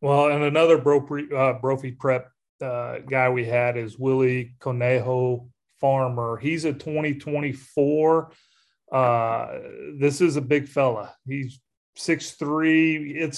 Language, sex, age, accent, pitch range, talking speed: English, male, 30-49, American, 125-145 Hz, 125 wpm